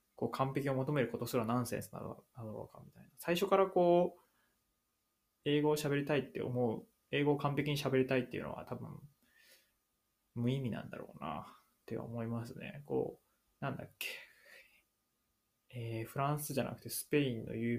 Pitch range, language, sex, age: 115-140 Hz, Japanese, male, 20-39